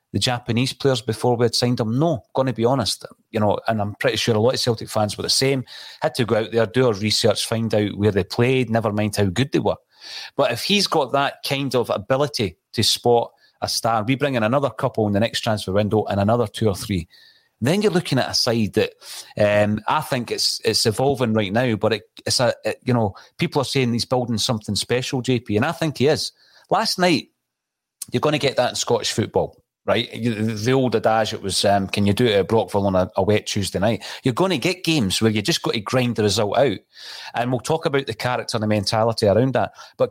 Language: English